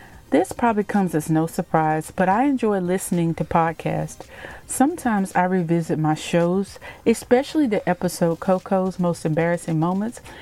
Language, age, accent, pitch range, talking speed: English, 40-59, American, 155-200 Hz, 140 wpm